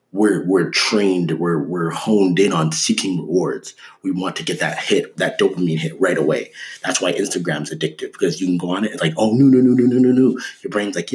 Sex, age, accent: male, 30-49, American